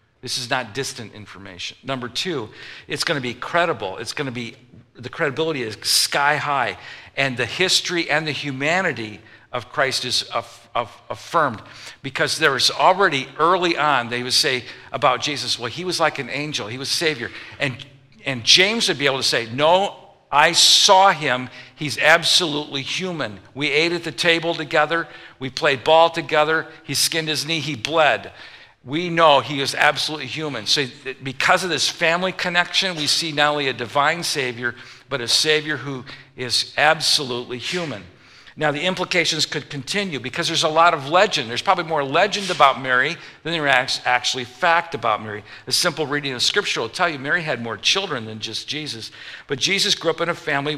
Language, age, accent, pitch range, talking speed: English, 50-69, American, 125-165 Hz, 180 wpm